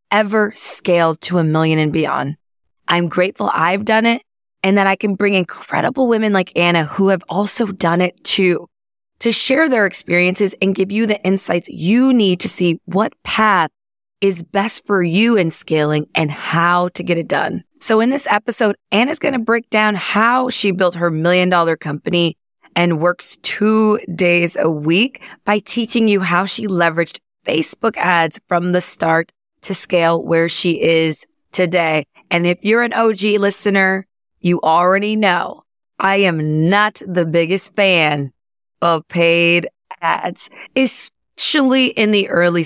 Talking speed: 160 wpm